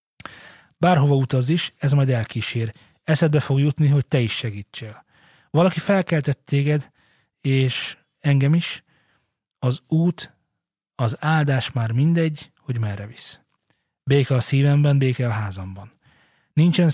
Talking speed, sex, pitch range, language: 125 wpm, male, 120-150 Hz, Hungarian